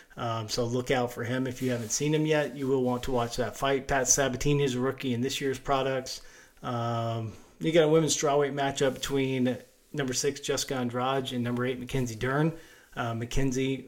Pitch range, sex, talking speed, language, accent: 125-140 Hz, male, 205 wpm, English, American